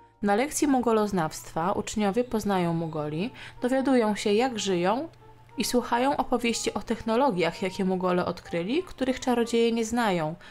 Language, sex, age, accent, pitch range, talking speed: Polish, female, 20-39, native, 185-245 Hz, 125 wpm